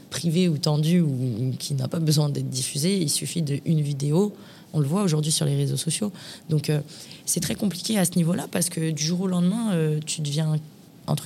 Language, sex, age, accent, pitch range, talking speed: French, female, 20-39, French, 150-180 Hz, 215 wpm